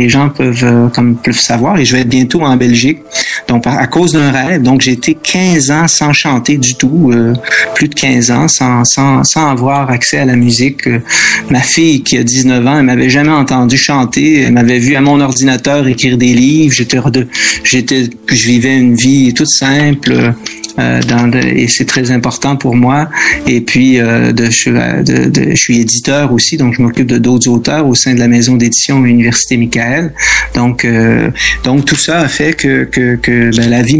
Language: French